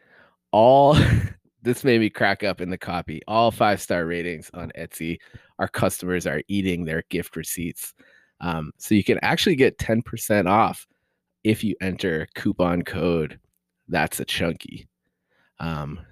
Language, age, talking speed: English, 20-39, 140 wpm